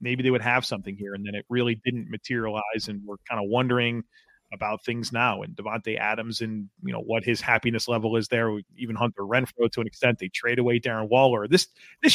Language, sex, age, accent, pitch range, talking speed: English, male, 30-49, American, 110-135 Hz, 220 wpm